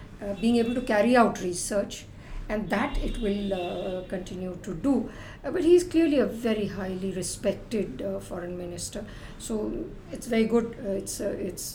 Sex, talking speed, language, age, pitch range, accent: female, 180 wpm, English, 60-79, 195-240 Hz, Indian